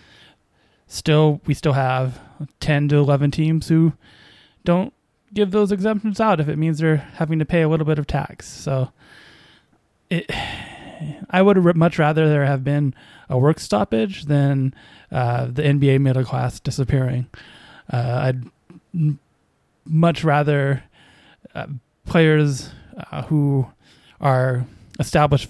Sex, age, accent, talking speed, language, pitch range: male, 20-39, American, 125 wpm, English, 135-160 Hz